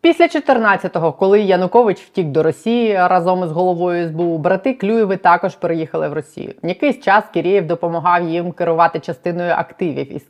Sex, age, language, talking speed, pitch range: female, 20-39, Ukrainian, 155 wpm, 160-195 Hz